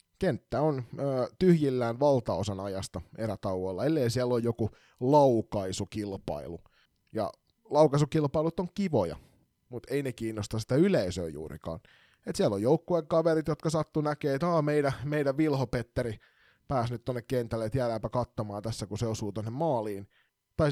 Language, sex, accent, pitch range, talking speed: Finnish, male, native, 105-135 Hz, 140 wpm